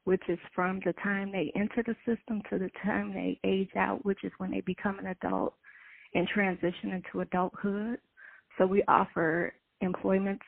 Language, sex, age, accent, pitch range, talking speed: English, female, 20-39, American, 180-205 Hz, 170 wpm